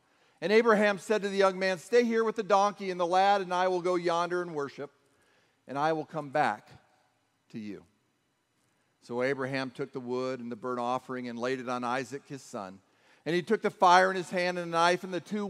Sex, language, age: male, English, 40-59